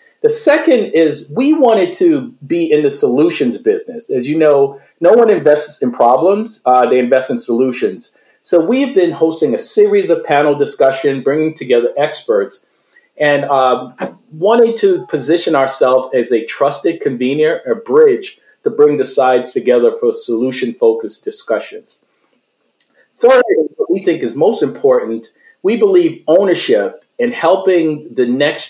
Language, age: English, 40-59